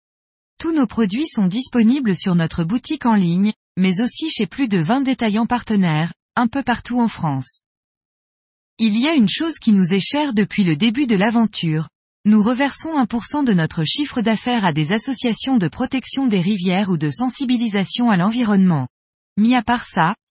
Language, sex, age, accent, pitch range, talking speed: French, female, 20-39, French, 190-250 Hz, 175 wpm